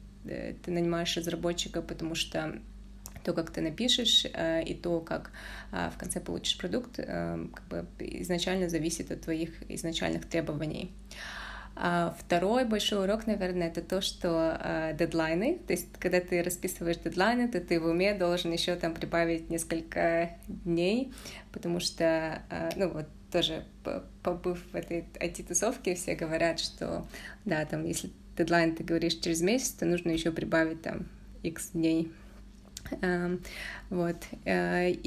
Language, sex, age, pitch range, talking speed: Russian, female, 20-39, 165-185 Hz, 130 wpm